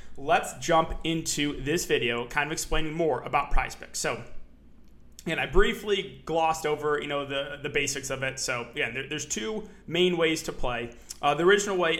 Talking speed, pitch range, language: 190 wpm, 135-175 Hz, English